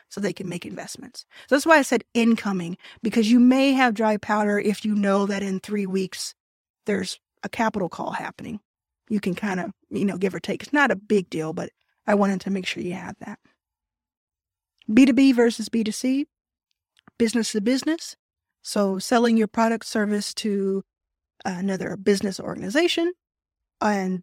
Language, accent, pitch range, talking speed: English, American, 195-230 Hz, 170 wpm